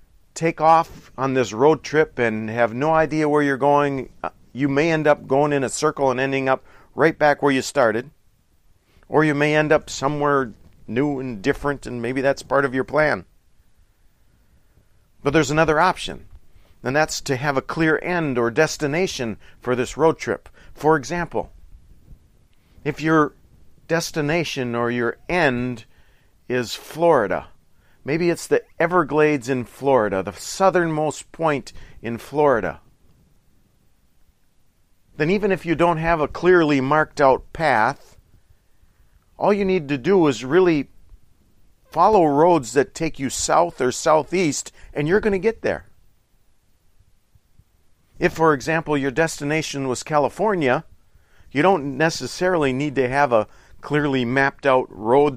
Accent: American